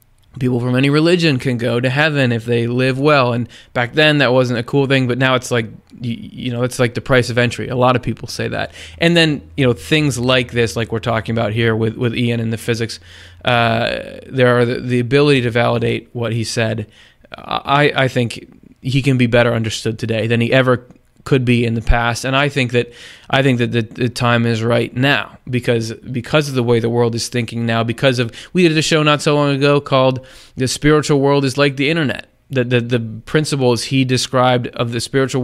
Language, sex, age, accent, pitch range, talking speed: English, male, 20-39, American, 115-130 Hz, 225 wpm